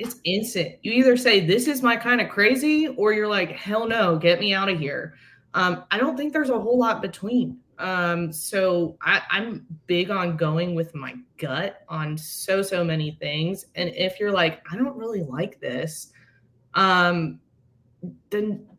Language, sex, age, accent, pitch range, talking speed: English, female, 20-39, American, 155-210 Hz, 170 wpm